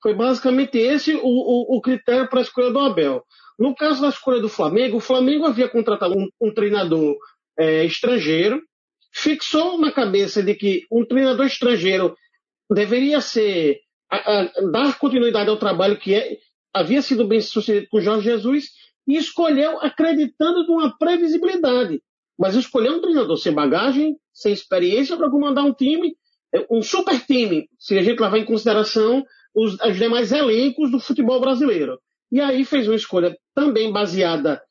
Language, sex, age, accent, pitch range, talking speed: Portuguese, male, 40-59, Brazilian, 210-290 Hz, 150 wpm